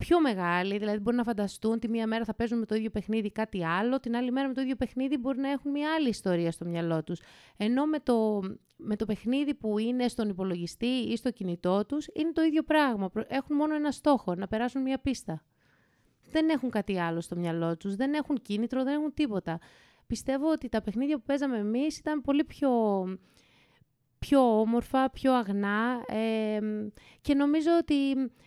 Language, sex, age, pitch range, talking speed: Greek, female, 30-49, 200-275 Hz, 190 wpm